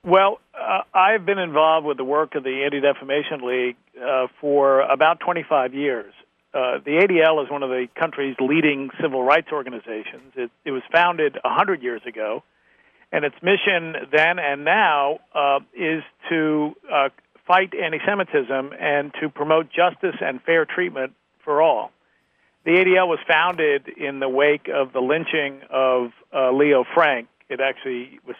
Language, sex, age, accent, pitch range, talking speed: English, male, 50-69, American, 135-165 Hz, 155 wpm